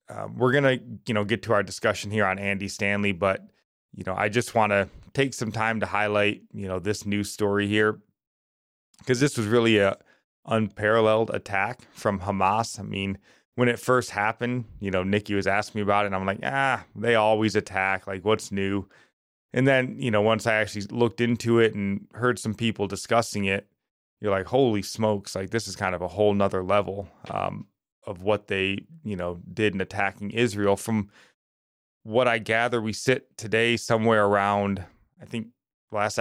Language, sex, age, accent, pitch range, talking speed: English, male, 20-39, American, 100-115 Hz, 190 wpm